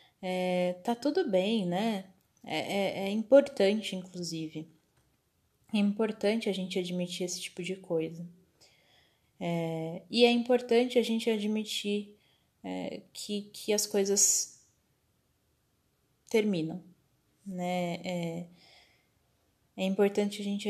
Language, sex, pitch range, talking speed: Portuguese, female, 180-210 Hz, 110 wpm